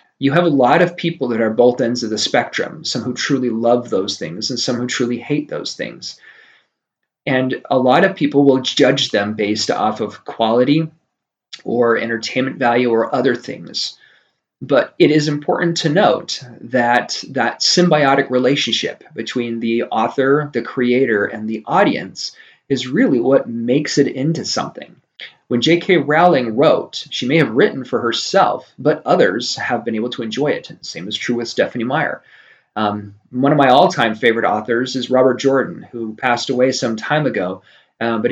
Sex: male